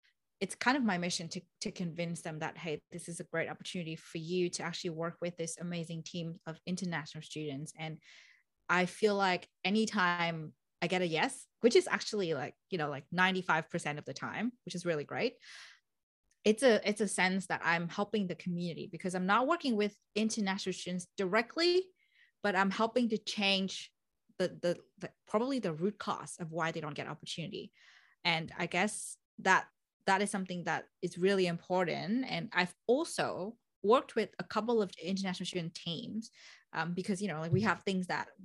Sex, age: female, 20-39